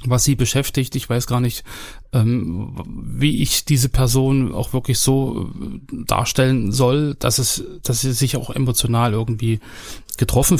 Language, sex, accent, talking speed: German, male, German, 140 wpm